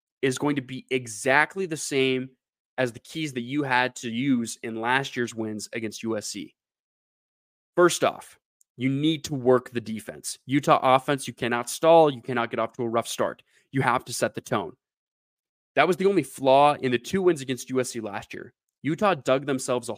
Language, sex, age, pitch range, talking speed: English, male, 20-39, 120-140 Hz, 195 wpm